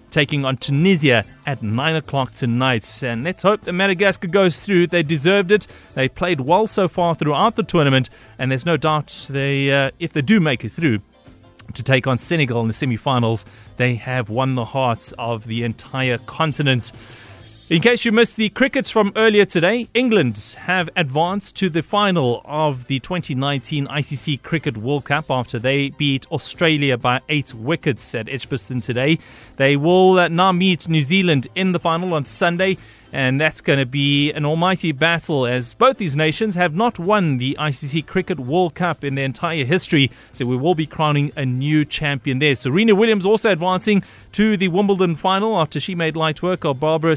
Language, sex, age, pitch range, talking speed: English, male, 30-49, 130-180 Hz, 185 wpm